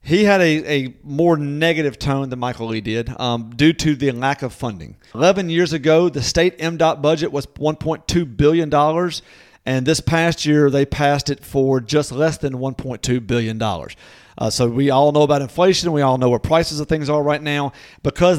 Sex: male